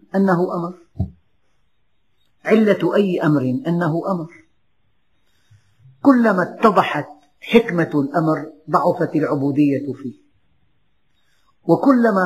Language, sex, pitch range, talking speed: Arabic, female, 125-160 Hz, 75 wpm